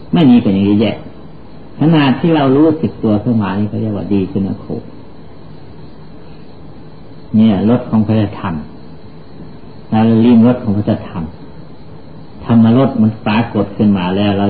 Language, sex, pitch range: Thai, male, 100-145 Hz